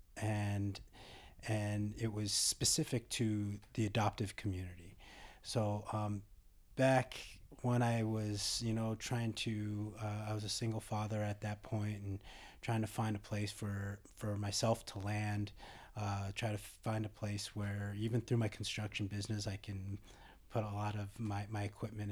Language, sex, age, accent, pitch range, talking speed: English, male, 30-49, American, 100-110 Hz, 165 wpm